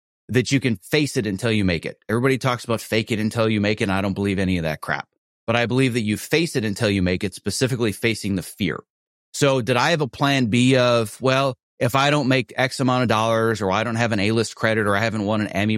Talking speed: 270 wpm